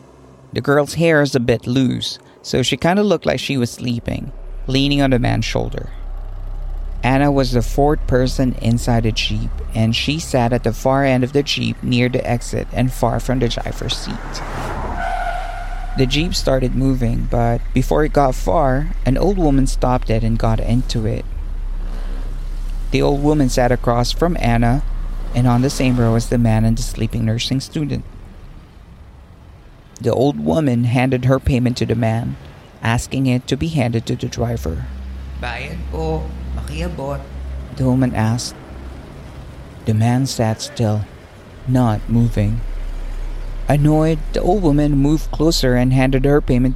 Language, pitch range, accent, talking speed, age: Filipino, 90-130 Hz, American, 155 wpm, 50-69